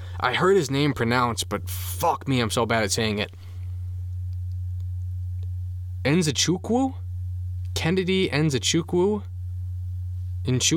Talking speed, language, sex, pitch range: 95 wpm, English, male, 90-140 Hz